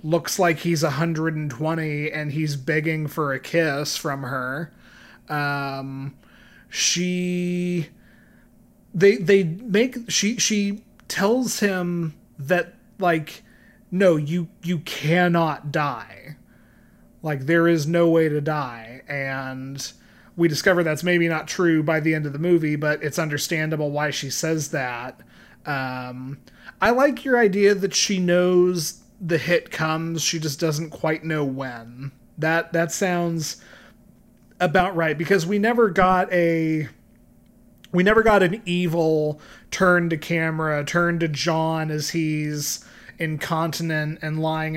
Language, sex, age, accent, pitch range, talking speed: English, male, 30-49, American, 150-175 Hz, 135 wpm